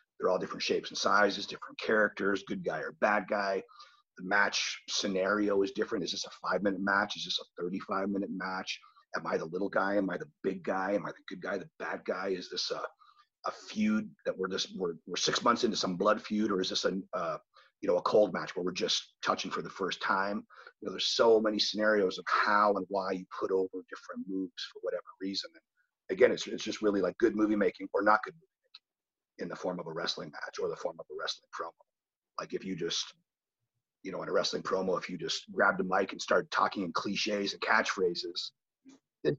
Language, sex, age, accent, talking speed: English, male, 40-59, American, 225 wpm